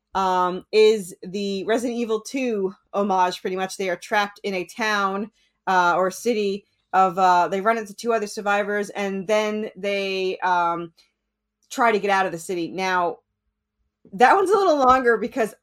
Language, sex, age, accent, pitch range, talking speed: English, female, 30-49, American, 190-255 Hz, 170 wpm